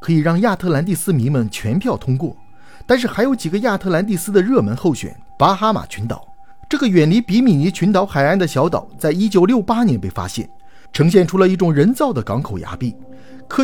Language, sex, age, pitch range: Chinese, male, 50-69, 135-225 Hz